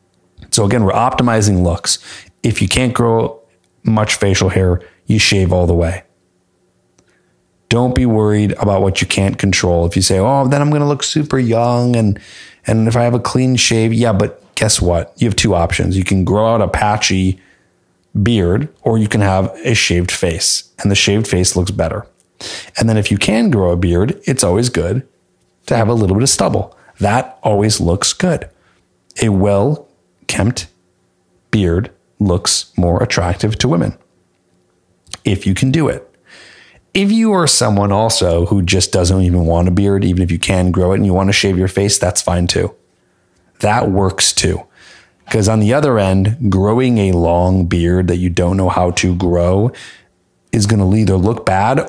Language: English